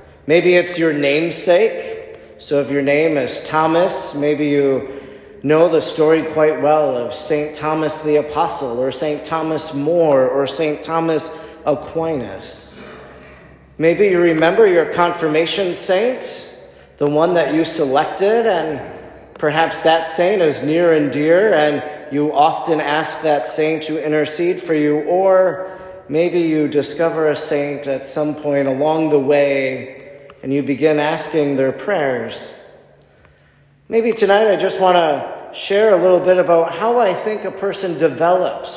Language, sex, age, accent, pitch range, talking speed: English, male, 30-49, American, 150-180 Hz, 145 wpm